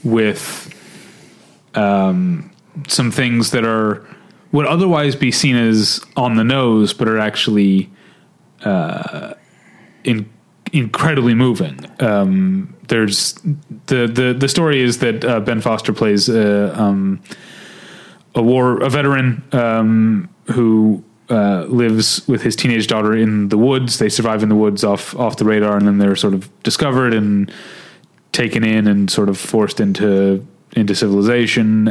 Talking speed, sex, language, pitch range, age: 140 wpm, male, English, 105-145 Hz, 30-49